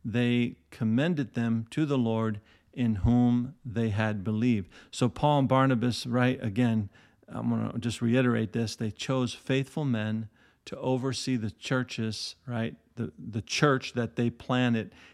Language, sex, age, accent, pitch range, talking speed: English, male, 50-69, American, 105-125 Hz, 150 wpm